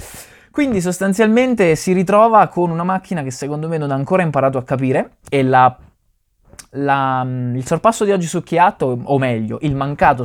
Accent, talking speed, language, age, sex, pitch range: native, 160 wpm, Italian, 20-39, male, 125-165 Hz